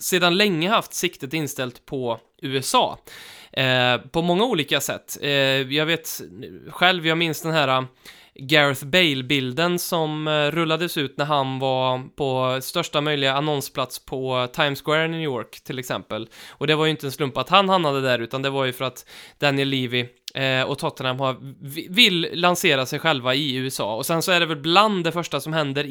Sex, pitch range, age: male, 130-160 Hz, 20-39